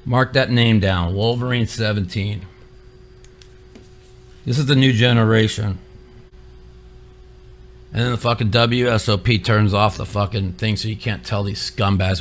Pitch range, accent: 105-135 Hz, American